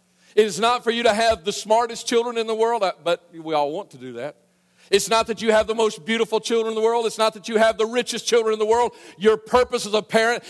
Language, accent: English, American